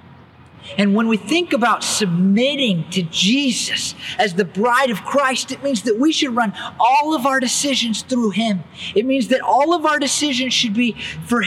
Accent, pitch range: American, 145-225 Hz